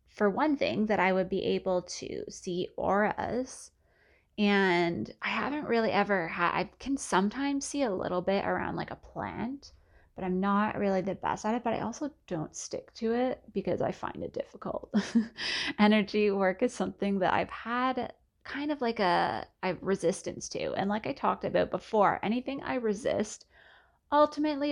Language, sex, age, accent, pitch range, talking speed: English, female, 20-39, American, 185-225 Hz, 175 wpm